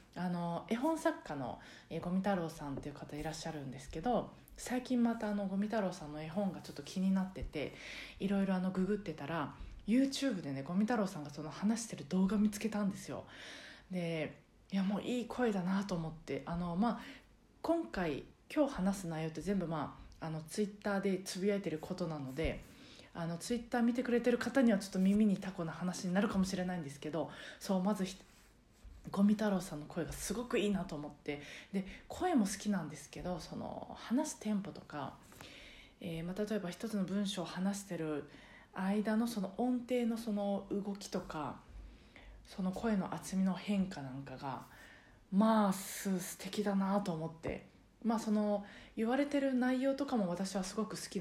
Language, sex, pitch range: Japanese, female, 165-215 Hz